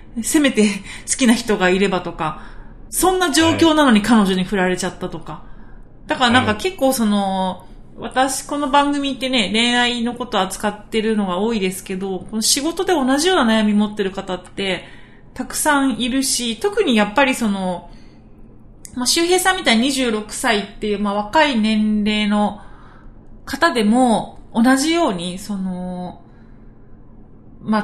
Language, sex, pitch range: Japanese, female, 190-260 Hz